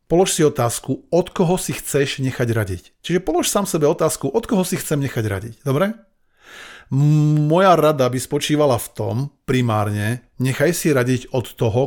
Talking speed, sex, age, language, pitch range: 165 wpm, male, 40-59, Slovak, 120-150 Hz